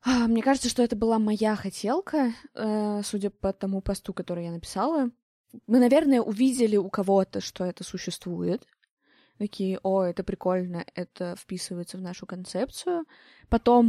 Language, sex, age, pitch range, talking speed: Russian, female, 20-39, 180-235 Hz, 140 wpm